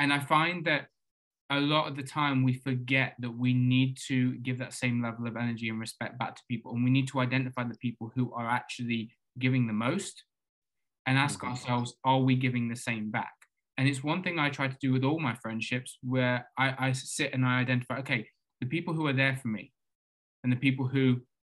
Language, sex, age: English, male, 20-39